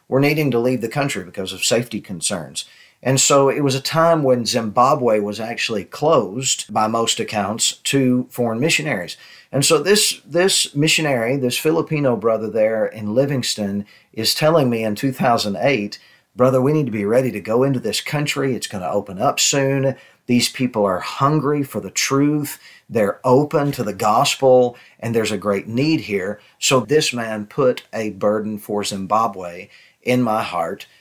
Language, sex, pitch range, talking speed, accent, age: English, male, 105-135 Hz, 170 wpm, American, 40-59